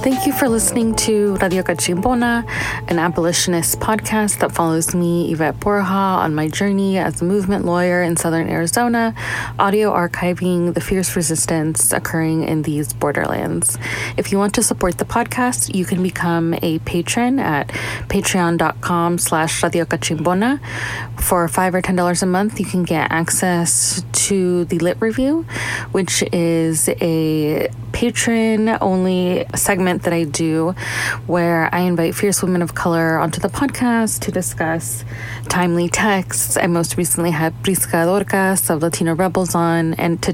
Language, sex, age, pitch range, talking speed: English, female, 20-39, 160-195 Hz, 150 wpm